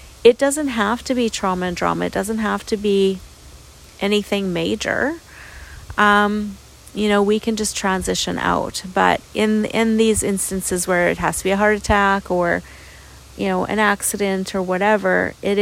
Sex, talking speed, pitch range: female, 170 wpm, 175-205 Hz